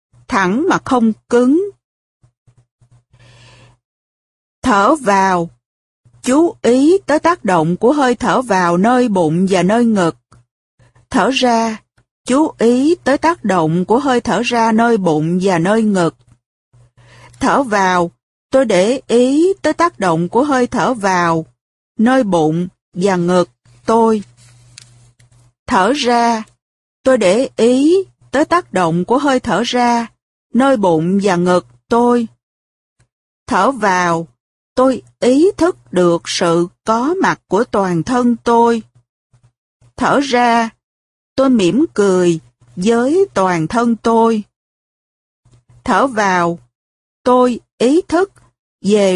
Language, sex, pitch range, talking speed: Vietnamese, female, 165-250 Hz, 120 wpm